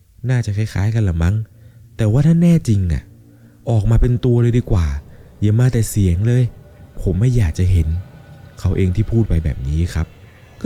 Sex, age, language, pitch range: male, 20-39, Thai, 80-110 Hz